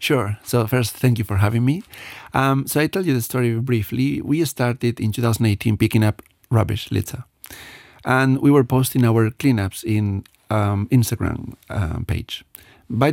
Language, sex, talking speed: English, male, 175 wpm